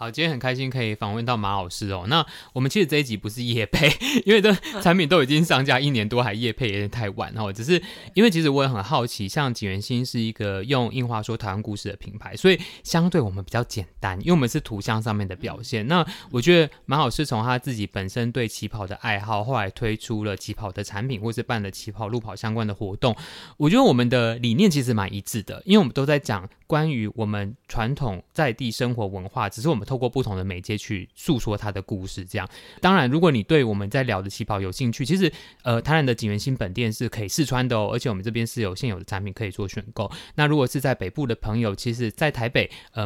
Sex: male